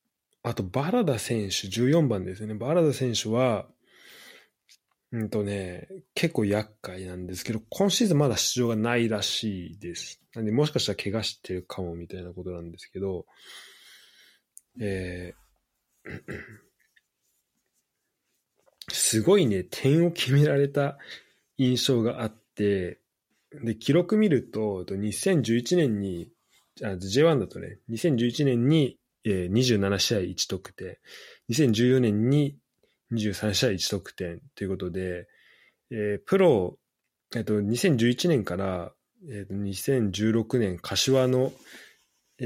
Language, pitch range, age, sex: Japanese, 100-140 Hz, 20-39, male